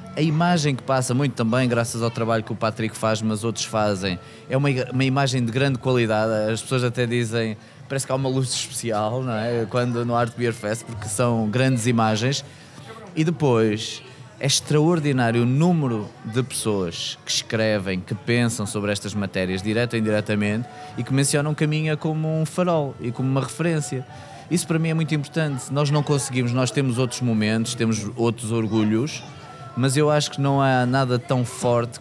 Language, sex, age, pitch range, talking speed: Portuguese, male, 20-39, 110-145 Hz, 180 wpm